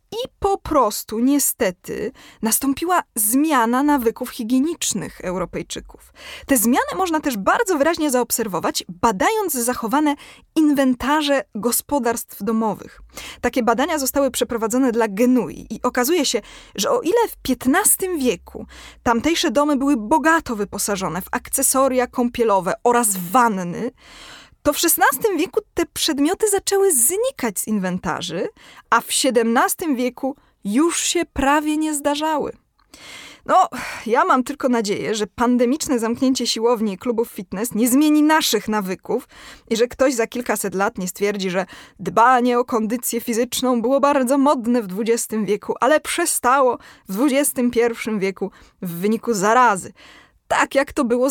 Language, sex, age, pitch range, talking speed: Polish, female, 20-39, 230-295 Hz, 130 wpm